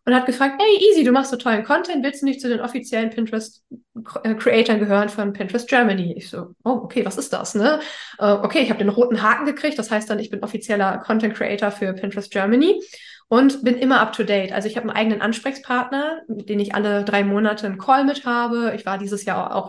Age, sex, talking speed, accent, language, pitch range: 20-39, female, 225 wpm, German, German, 210-255 Hz